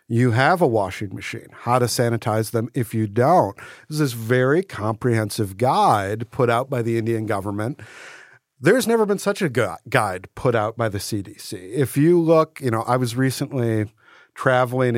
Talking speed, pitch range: 185 wpm, 115-140 Hz